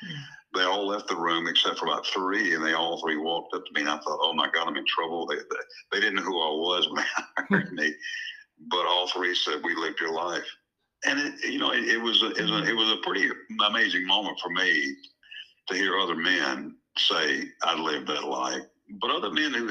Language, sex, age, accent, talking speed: English, male, 60-79, American, 240 wpm